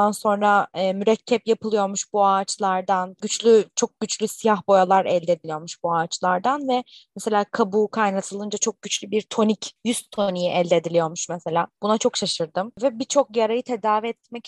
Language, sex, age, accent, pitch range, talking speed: Turkish, female, 20-39, native, 195-245 Hz, 150 wpm